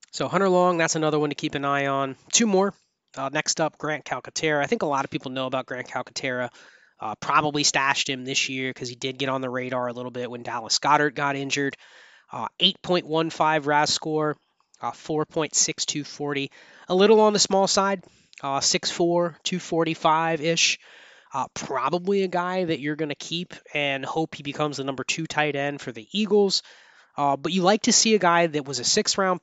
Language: English